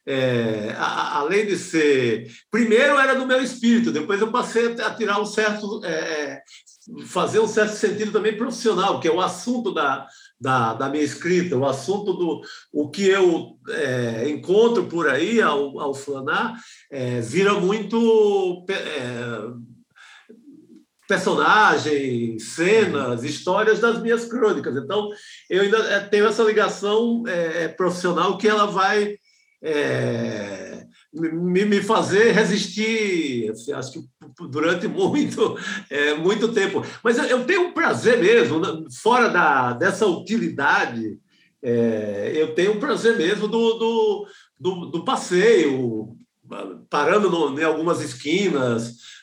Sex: male